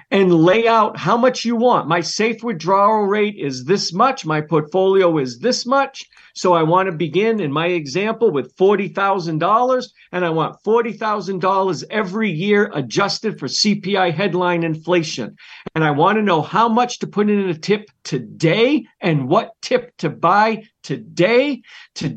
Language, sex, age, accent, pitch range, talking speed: English, male, 50-69, American, 170-215 Hz, 155 wpm